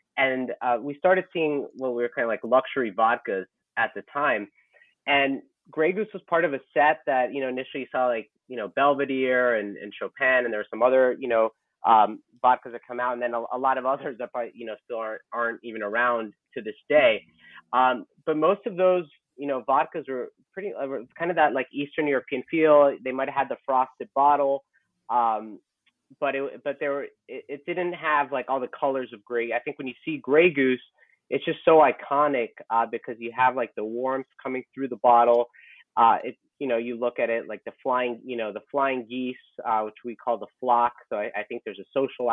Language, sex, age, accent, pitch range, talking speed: English, male, 30-49, American, 120-145 Hz, 225 wpm